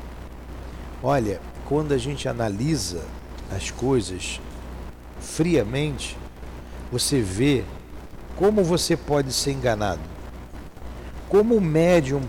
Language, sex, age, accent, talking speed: Portuguese, male, 60-79, Brazilian, 90 wpm